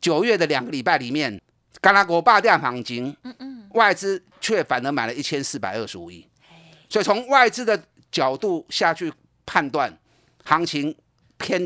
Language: Chinese